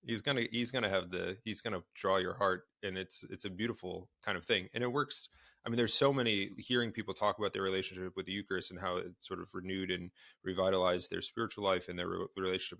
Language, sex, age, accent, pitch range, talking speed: English, male, 30-49, American, 90-110 Hz, 235 wpm